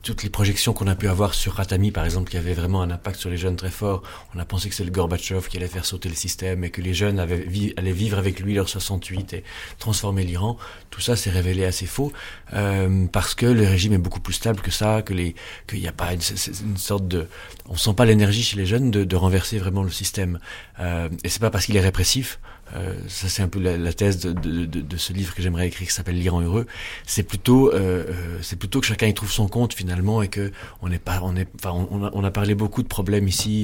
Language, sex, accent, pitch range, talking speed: French, male, French, 90-105 Hz, 260 wpm